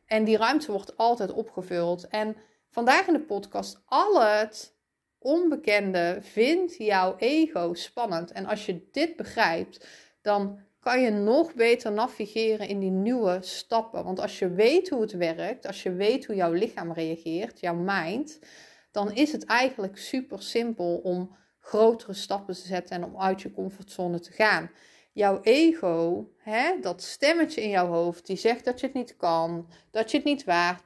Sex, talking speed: female, 170 wpm